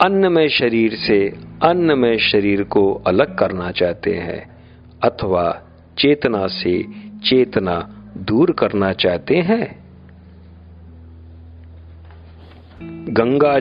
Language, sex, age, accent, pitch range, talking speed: Hindi, male, 50-69, native, 90-130 Hz, 85 wpm